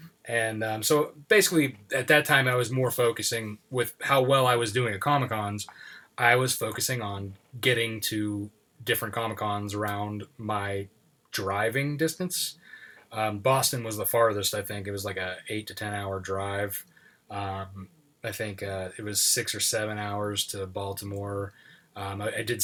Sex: male